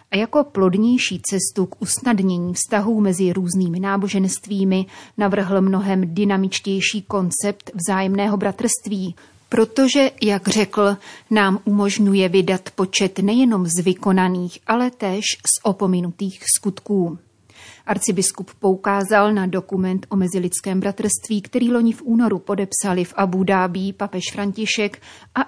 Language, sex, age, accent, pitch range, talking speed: Czech, female, 30-49, native, 185-205 Hz, 115 wpm